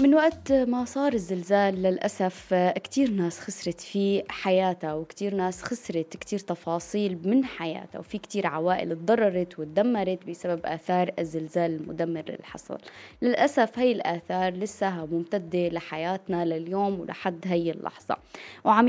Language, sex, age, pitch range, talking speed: Arabic, female, 20-39, 175-220 Hz, 125 wpm